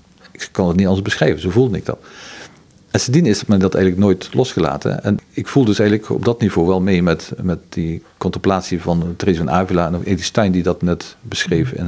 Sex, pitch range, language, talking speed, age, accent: male, 90-105 Hz, Dutch, 230 wpm, 50-69, Dutch